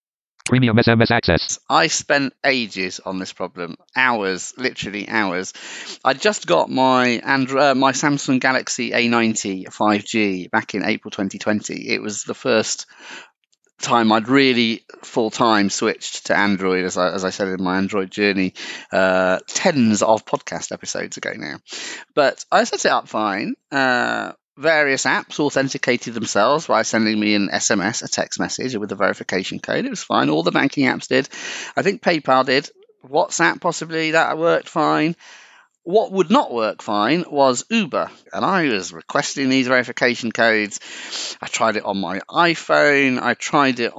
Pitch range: 100-140 Hz